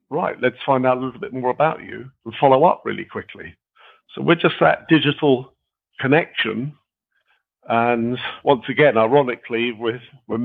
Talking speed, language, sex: 150 wpm, English, male